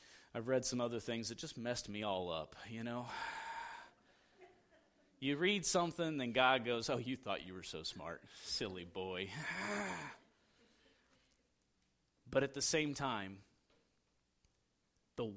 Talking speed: 135 wpm